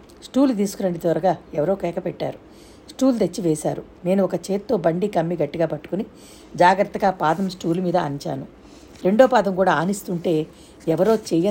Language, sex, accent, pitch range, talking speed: Telugu, female, native, 160-195 Hz, 140 wpm